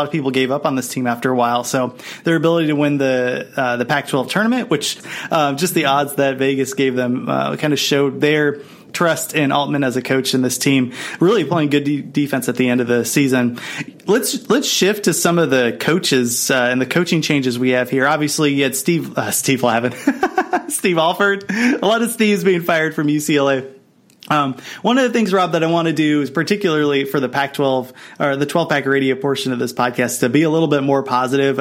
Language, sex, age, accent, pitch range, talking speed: English, male, 30-49, American, 130-165 Hz, 225 wpm